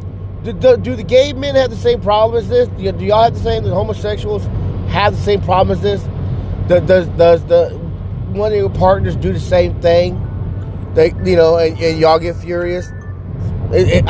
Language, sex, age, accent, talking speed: English, male, 30-49, American, 210 wpm